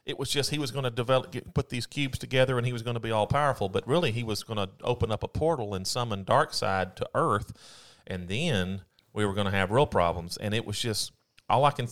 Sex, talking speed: male, 260 wpm